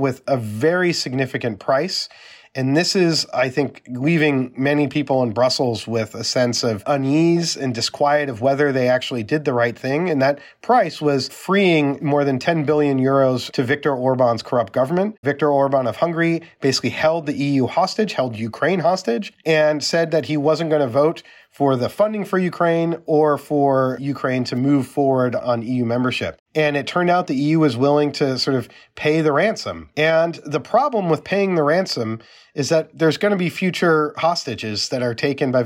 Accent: American